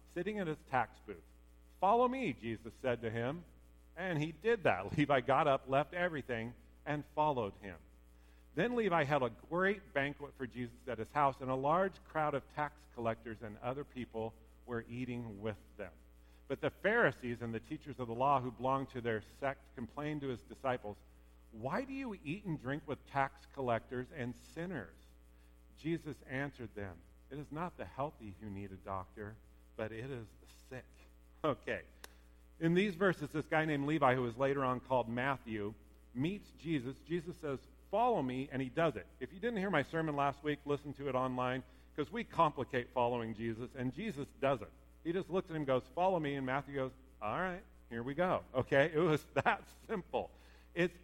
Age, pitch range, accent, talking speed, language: 50-69, 110-150 Hz, American, 190 wpm, English